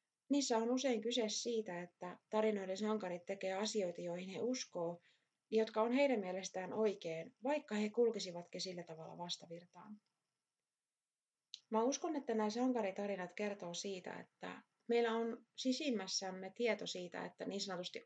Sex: female